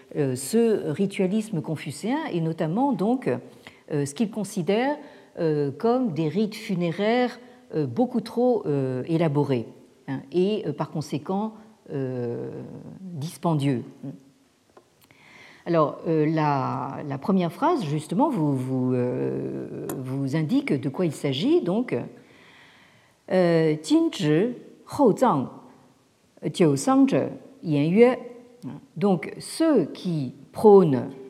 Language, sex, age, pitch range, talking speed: French, female, 50-69, 140-215 Hz, 80 wpm